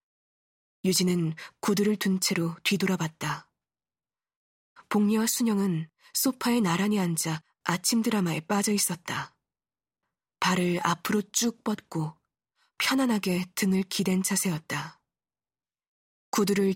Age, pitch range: 20-39, 170-210 Hz